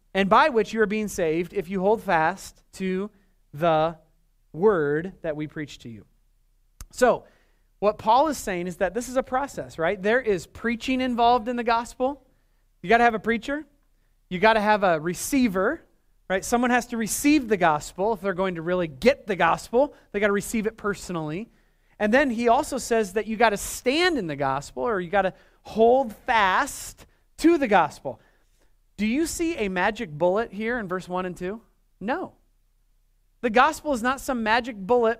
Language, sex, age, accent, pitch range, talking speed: English, male, 30-49, American, 180-250 Hz, 195 wpm